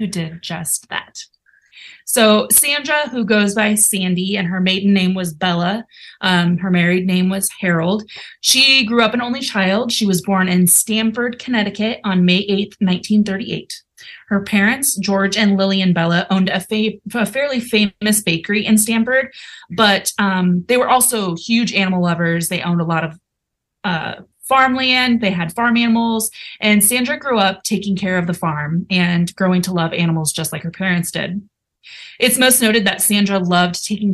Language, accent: English, American